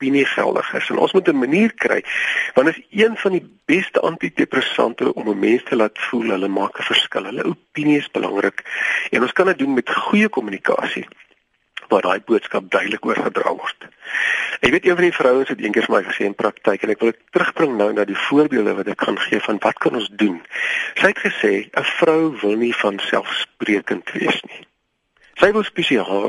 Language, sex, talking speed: Dutch, male, 210 wpm